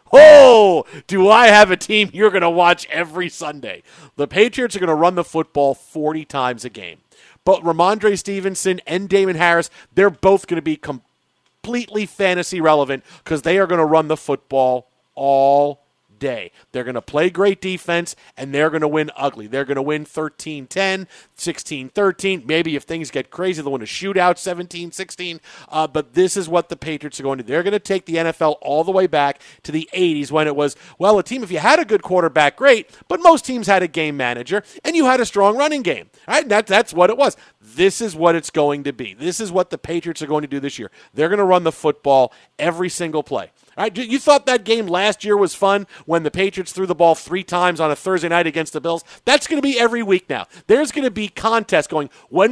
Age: 40-59